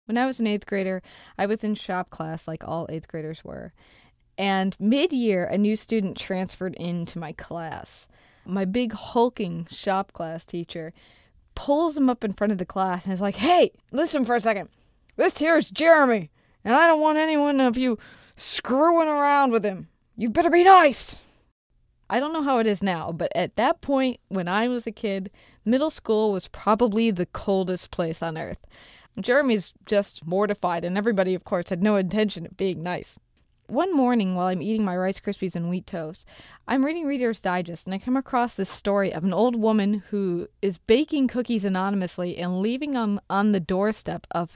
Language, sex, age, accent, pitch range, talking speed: English, female, 20-39, American, 180-245 Hz, 190 wpm